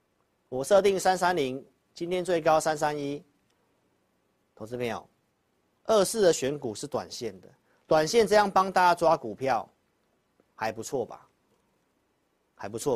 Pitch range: 120-170 Hz